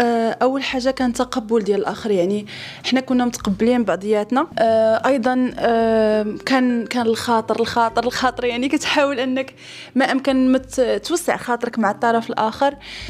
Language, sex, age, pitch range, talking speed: Arabic, female, 20-39, 225-260 Hz, 135 wpm